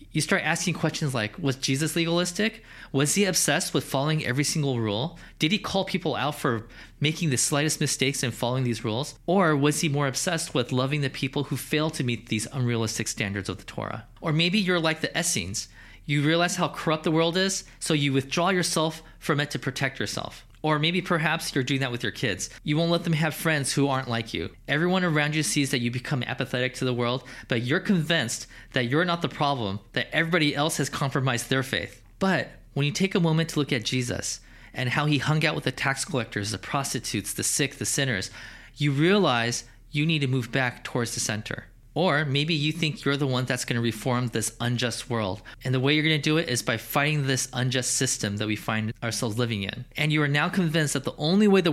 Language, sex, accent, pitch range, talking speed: English, male, American, 120-155 Hz, 225 wpm